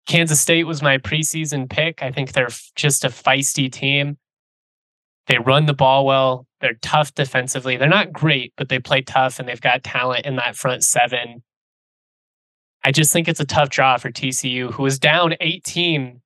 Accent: American